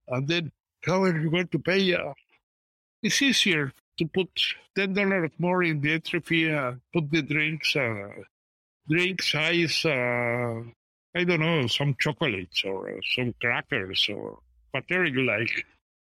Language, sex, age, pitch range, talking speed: English, male, 60-79, 130-185 Hz, 145 wpm